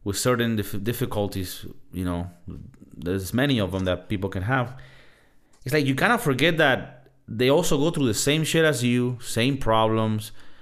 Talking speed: 175 wpm